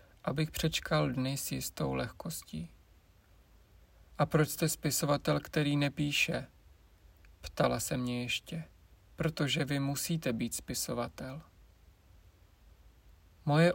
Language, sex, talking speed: Czech, male, 95 wpm